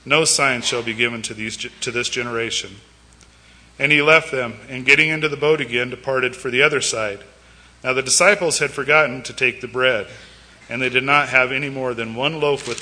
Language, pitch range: English, 115-140 Hz